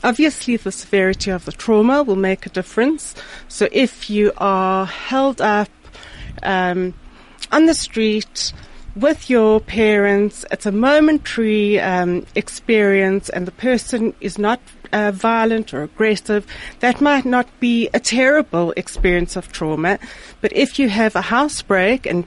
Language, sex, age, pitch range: English, female, 30-49, 185-235 Hz